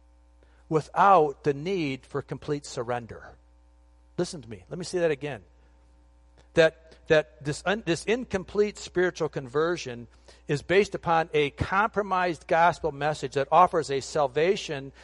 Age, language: 50-69, English